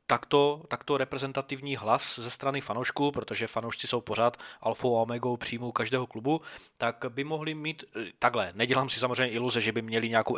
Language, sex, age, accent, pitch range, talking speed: Czech, male, 20-39, native, 115-130 Hz, 175 wpm